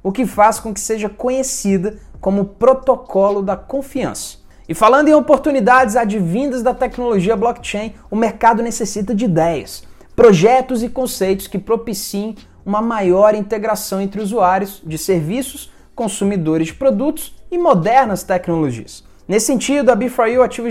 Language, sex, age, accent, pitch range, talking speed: Portuguese, male, 20-39, Brazilian, 195-250 Hz, 140 wpm